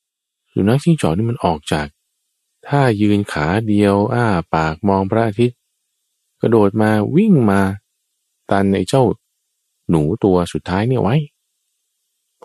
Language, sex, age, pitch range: Thai, male, 20-39, 75-105 Hz